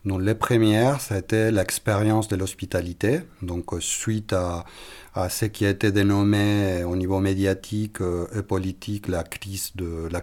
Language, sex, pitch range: French, male, 95-110 Hz